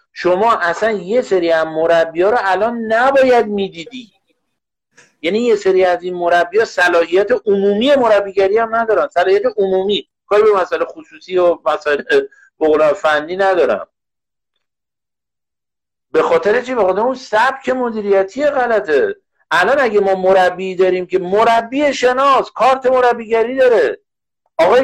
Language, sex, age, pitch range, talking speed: Persian, male, 50-69, 190-260 Hz, 135 wpm